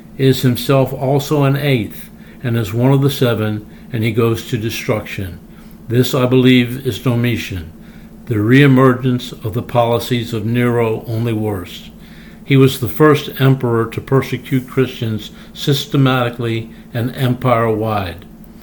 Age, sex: 60-79, male